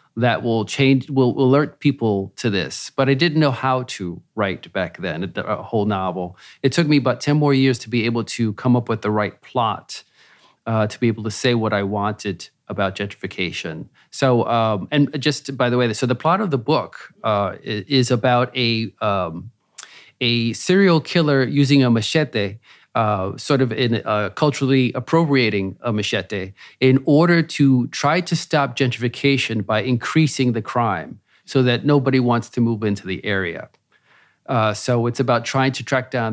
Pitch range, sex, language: 110-135 Hz, male, English